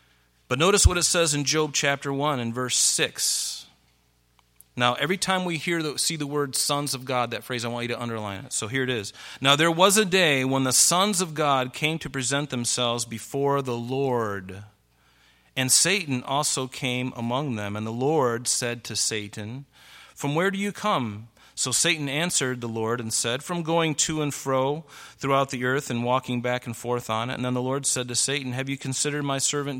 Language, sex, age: English, male, 40-59